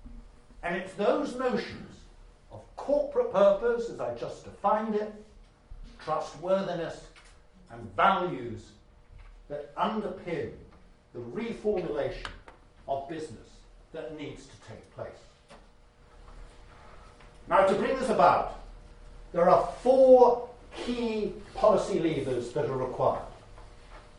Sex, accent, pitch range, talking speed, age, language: male, British, 145-220 Hz, 100 wpm, 60-79, English